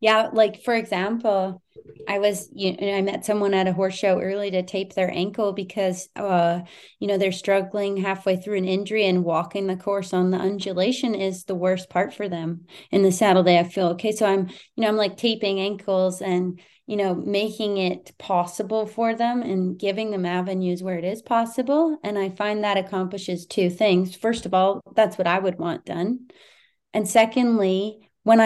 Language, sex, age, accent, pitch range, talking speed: English, female, 30-49, American, 175-200 Hz, 195 wpm